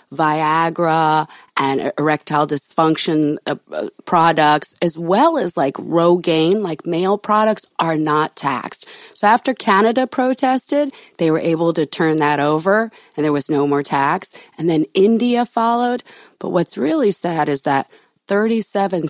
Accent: American